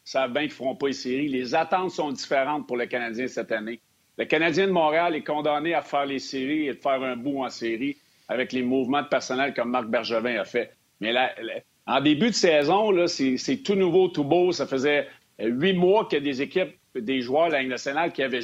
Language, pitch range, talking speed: French, 135-190 Hz, 245 wpm